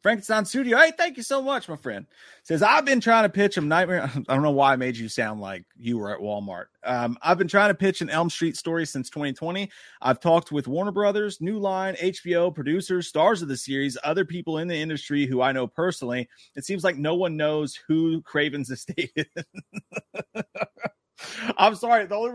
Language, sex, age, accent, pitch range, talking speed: English, male, 30-49, American, 150-220 Hz, 210 wpm